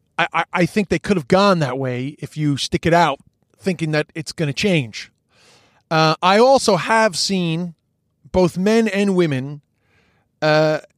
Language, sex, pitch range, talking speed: English, male, 140-185 Hz, 165 wpm